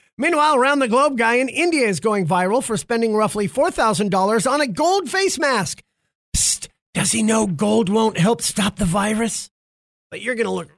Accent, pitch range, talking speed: American, 175-255 Hz, 190 wpm